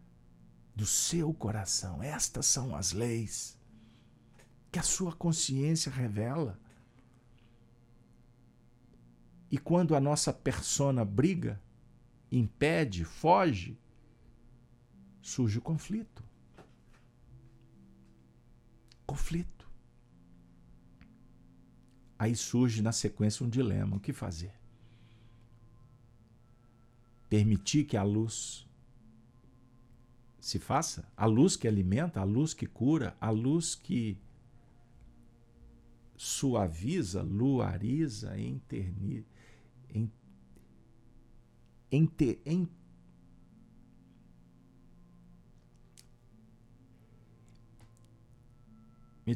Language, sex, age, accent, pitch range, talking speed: Portuguese, male, 50-69, Brazilian, 95-125 Hz, 70 wpm